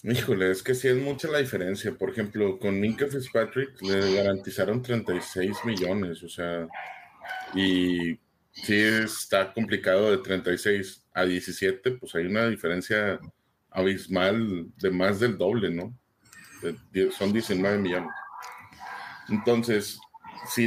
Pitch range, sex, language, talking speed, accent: 100-125 Hz, male, Spanish, 125 wpm, Mexican